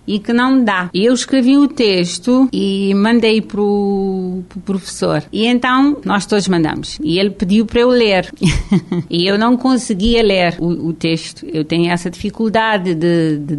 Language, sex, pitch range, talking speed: Portuguese, female, 175-235 Hz, 170 wpm